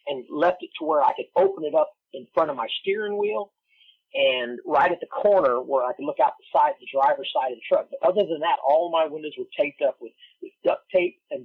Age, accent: 40-59, American